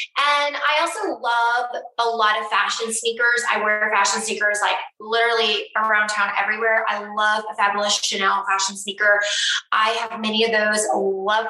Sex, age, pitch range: female, 20-39, 205-245 Hz